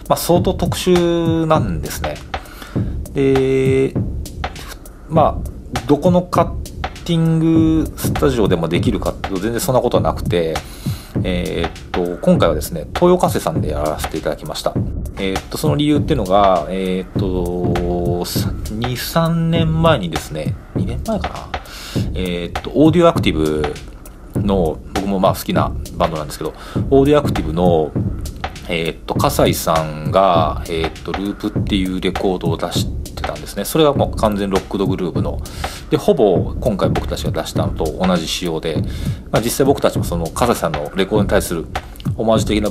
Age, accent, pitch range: 40-59, native, 85-135 Hz